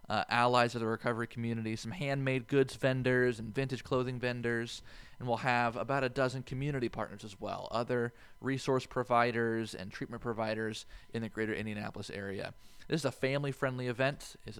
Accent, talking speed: American, 175 wpm